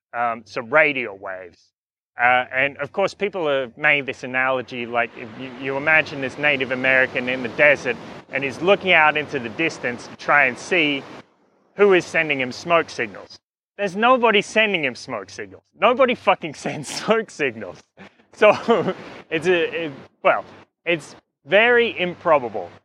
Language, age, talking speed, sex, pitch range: English, 30-49, 160 wpm, male, 130-175 Hz